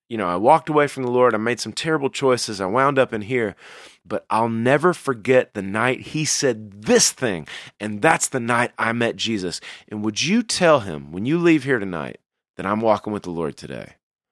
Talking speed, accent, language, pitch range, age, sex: 220 wpm, American, English, 115-170 Hz, 30-49, male